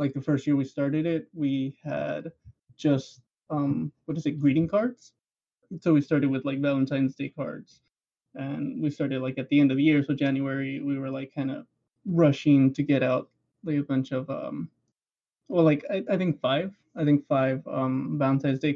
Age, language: 20-39, English